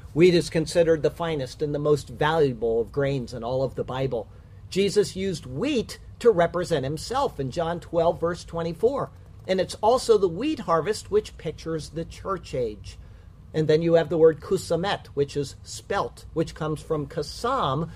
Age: 50-69